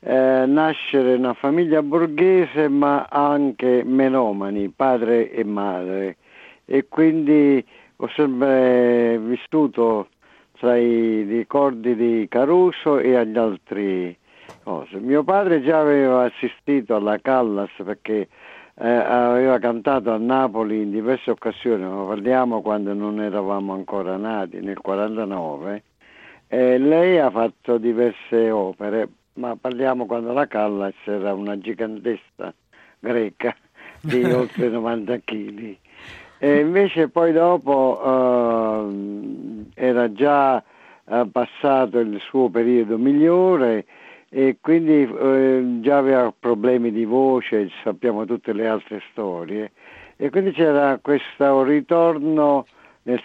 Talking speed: 115 wpm